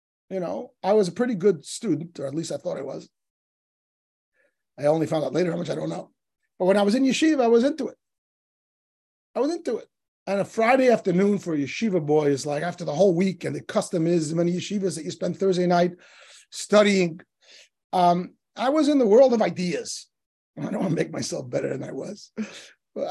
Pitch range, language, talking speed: 175-235 Hz, English, 215 wpm